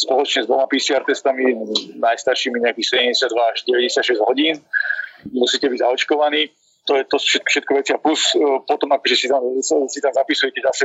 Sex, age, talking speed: male, 40-59, 150 wpm